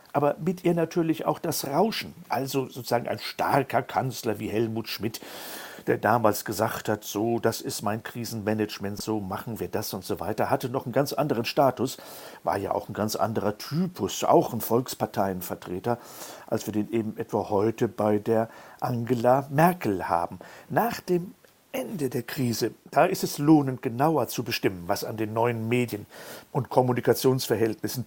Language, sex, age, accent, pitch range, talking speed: German, male, 50-69, German, 110-140 Hz, 165 wpm